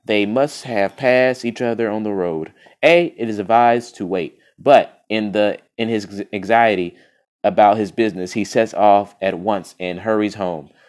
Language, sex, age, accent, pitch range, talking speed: English, male, 30-49, American, 100-120 Hz, 175 wpm